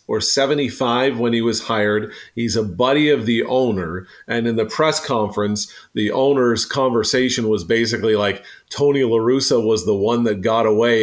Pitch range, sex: 110-130 Hz, male